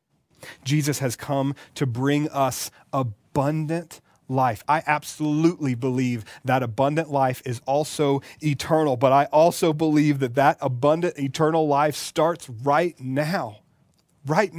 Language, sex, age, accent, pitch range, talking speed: English, male, 30-49, American, 145-200 Hz, 125 wpm